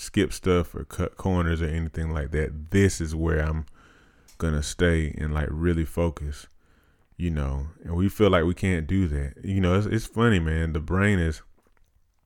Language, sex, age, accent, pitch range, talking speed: English, male, 30-49, American, 75-90 Hz, 190 wpm